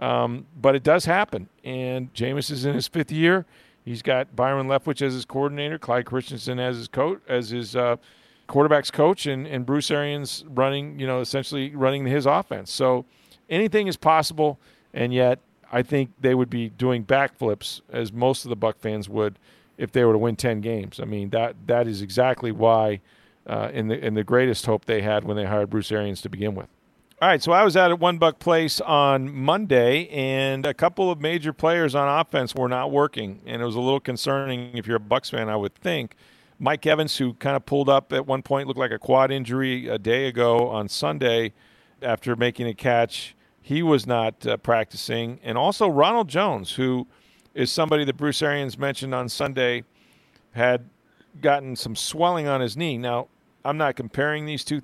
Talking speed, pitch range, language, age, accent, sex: 200 wpm, 120-145 Hz, English, 40-59, American, male